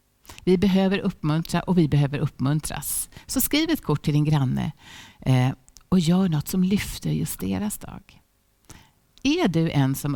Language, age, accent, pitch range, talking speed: Swedish, 60-79, native, 145-205 Hz, 155 wpm